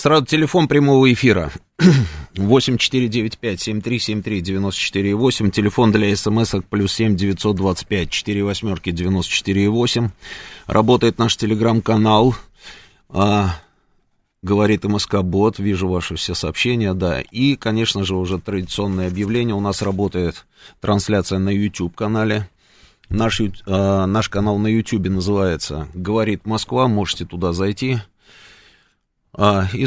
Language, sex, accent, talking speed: Russian, male, native, 130 wpm